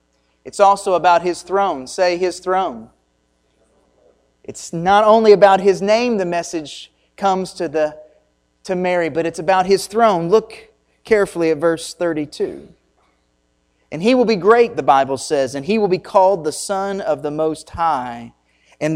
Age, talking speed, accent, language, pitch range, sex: 30-49, 160 wpm, American, English, 145-205 Hz, male